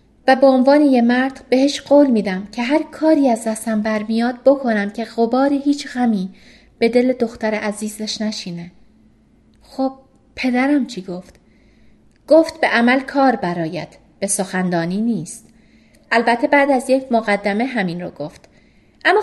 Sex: female